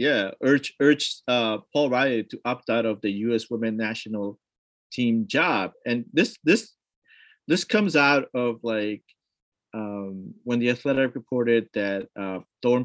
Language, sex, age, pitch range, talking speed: English, male, 30-49, 110-150 Hz, 150 wpm